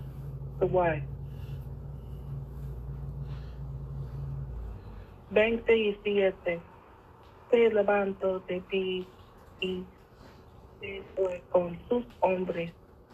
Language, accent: English, American